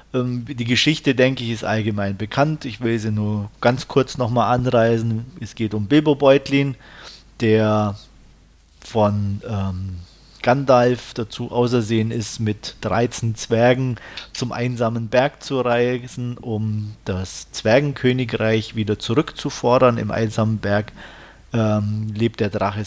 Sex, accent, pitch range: male, German, 105-120 Hz